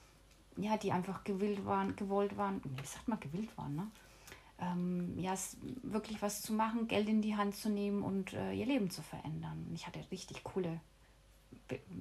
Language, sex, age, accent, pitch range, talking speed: German, female, 30-49, German, 175-215 Hz, 180 wpm